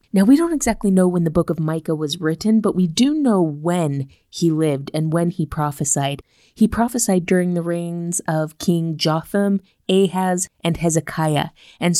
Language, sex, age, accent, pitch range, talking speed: English, female, 20-39, American, 155-190 Hz, 175 wpm